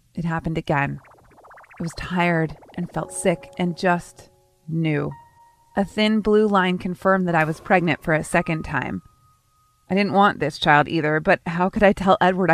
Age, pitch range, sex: 30-49, 165-210 Hz, female